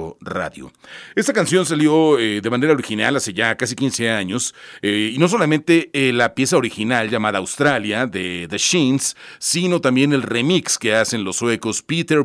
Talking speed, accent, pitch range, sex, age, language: 170 wpm, Mexican, 110-140 Hz, male, 40-59, Spanish